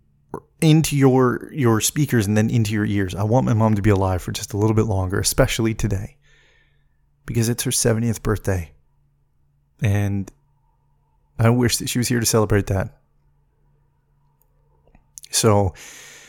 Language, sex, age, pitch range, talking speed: English, male, 30-49, 105-135 Hz, 145 wpm